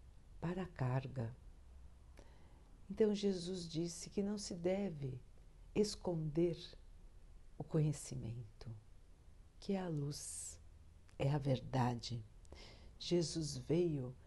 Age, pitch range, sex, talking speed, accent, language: 60-79, 105-165 Hz, female, 95 wpm, Brazilian, Portuguese